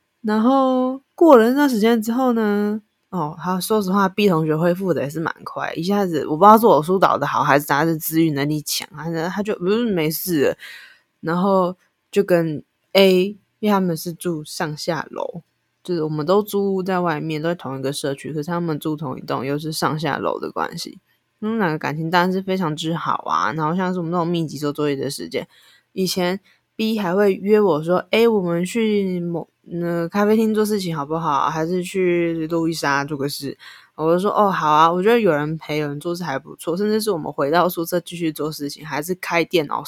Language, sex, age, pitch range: Chinese, female, 20-39, 155-205 Hz